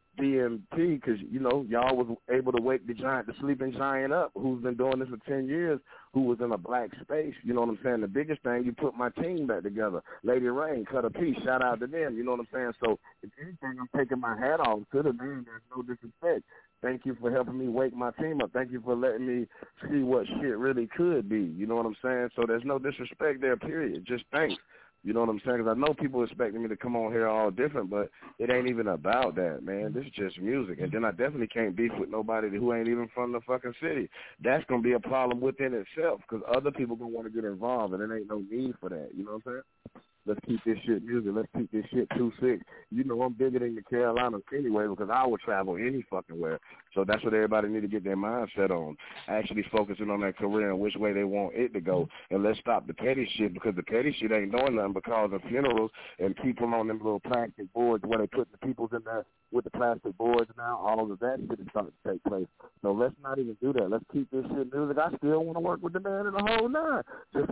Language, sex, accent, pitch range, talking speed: English, male, American, 110-130 Hz, 260 wpm